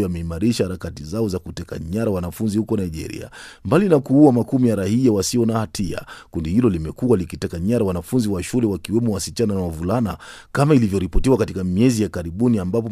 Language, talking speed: Swahili, 175 wpm